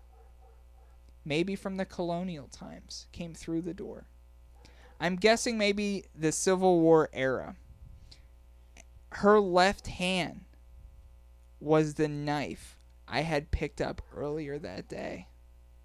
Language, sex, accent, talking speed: English, male, American, 110 wpm